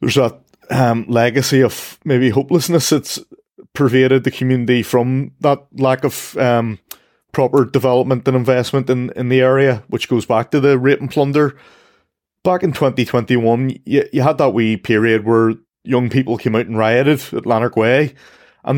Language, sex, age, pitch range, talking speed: English, male, 20-39, 125-150 Hz, 165 wpm